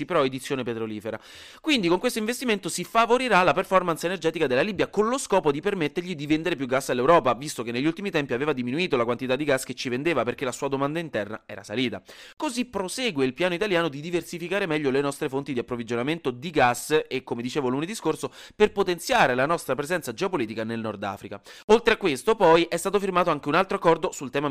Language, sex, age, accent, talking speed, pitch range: Italian, male, 30-49, native, 215 wpm, 130-185 Hz